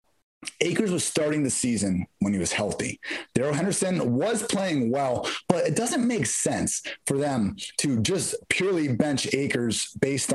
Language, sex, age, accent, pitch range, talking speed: English, male, 30-49, American, 120-155 Hz, 155 wpm